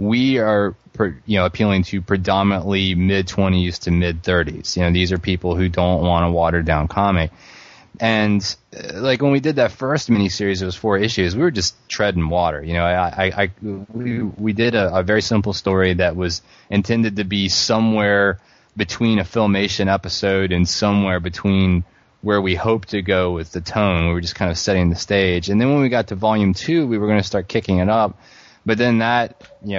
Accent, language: American, English